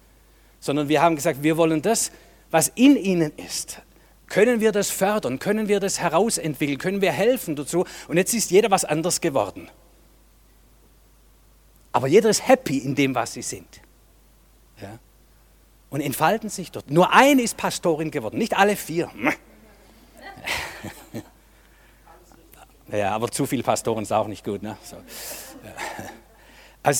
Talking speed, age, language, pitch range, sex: 140 wpm, 50-69, German, 135-185 Hz, male